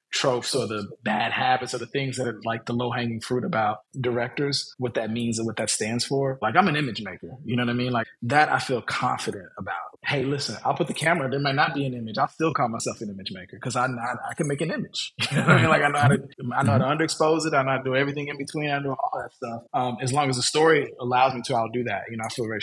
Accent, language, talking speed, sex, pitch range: American, English, 295 wpm, male, 115-135 Hz